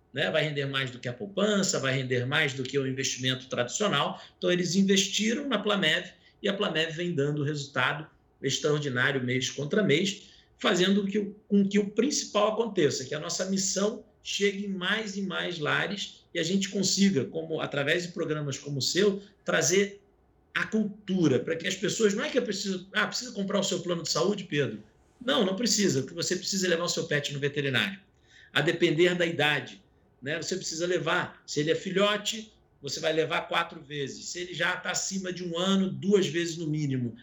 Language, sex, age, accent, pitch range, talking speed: Portuguese, male, 50-69, Brazilian, 150-200 Hz, 190 wpm